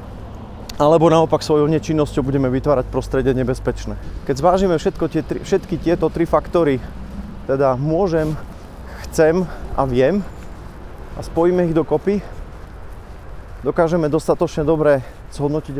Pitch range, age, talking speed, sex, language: 130-155 Hz, 30-49, 110 wpm, male, Slovak